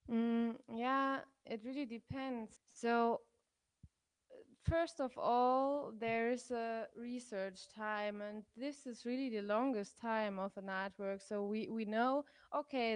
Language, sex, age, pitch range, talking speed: English, female, 20-39, 210-255 Hz, 135 wpm